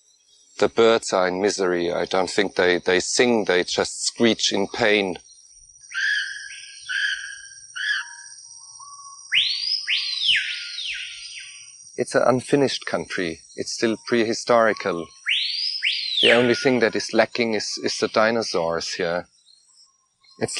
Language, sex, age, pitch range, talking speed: Persian, male, 40-59, 85-120 Hz, 100 wpm